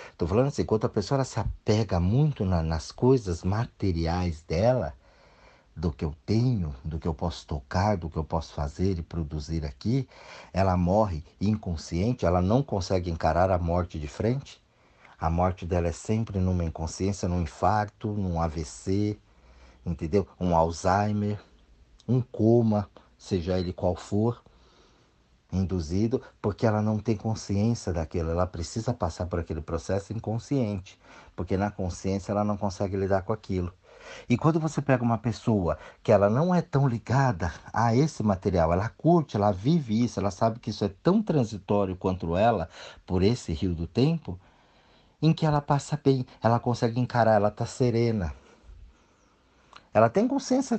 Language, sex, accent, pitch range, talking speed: Portuguese, male, Brazilian, 85-115 Hz, 155 wpm